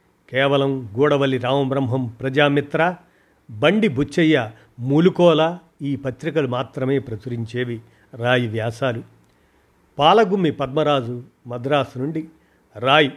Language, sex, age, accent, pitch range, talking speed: Telugu, male, 50-69, native, 125-155 Hz, 80 wpm